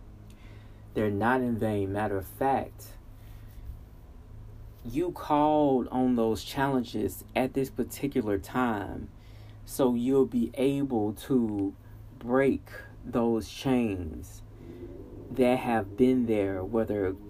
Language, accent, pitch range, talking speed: English, American, 105-125 Hz, 100 wpm